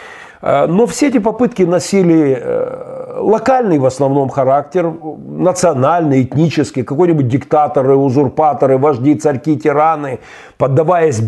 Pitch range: 135-195 Hz